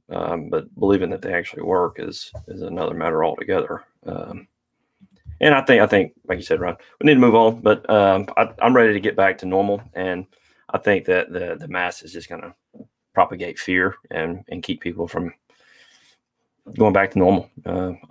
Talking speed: 200 wpm